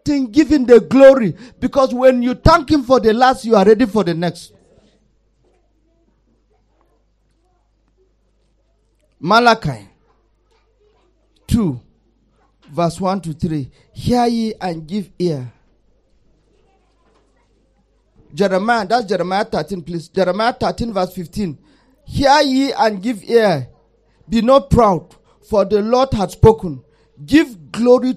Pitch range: 170-250 Hz